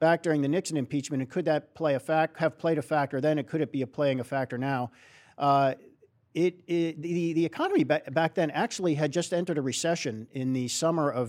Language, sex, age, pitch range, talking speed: English, male, 50-69, 125-165 Hz, 230 wpm